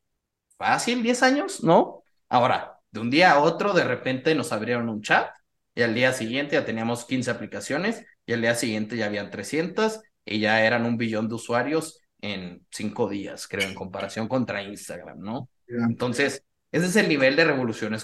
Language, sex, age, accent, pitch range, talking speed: Spanish, male, 30-49, Mexican, 110-150 Hz, 180 wpm